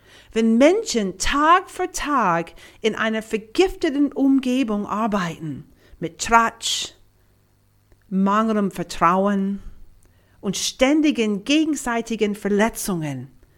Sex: female